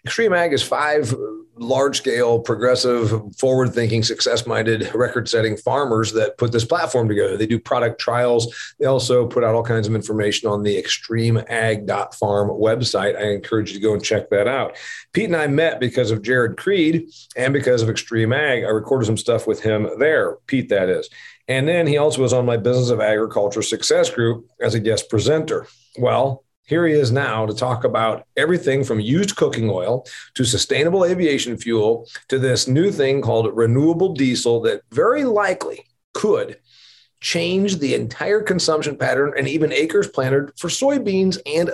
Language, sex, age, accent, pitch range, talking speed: English, male, 40-59, American, 115-185 Hz, 170 wpm